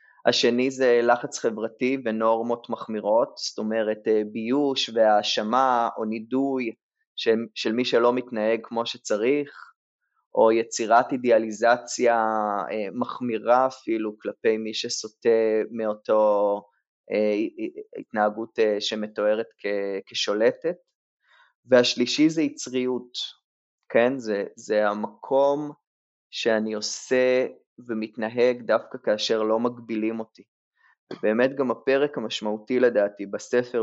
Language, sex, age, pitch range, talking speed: Hebrew, male, 20-39, 110-125 Hz, 90 wpm